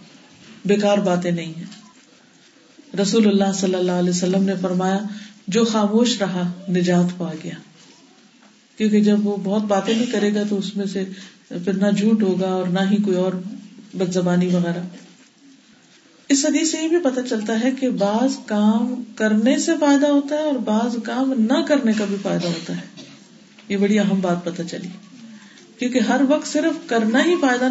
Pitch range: 195-255 Hz